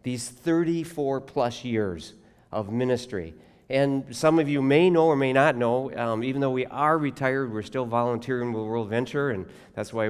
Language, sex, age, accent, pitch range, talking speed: English, male, 50-69, American, 115-145 Hz, 170 wpm